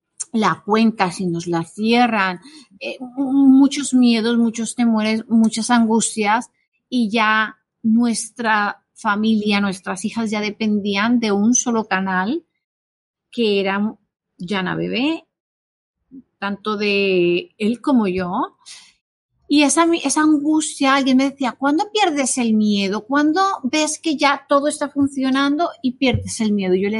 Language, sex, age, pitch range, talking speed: Spanish, female, 30-49, 210-275 Hz, 130 wpm